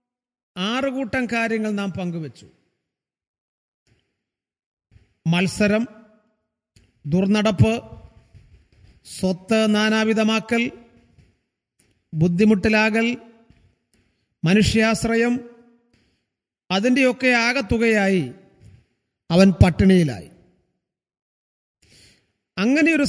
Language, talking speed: Malayalam, 40 wpm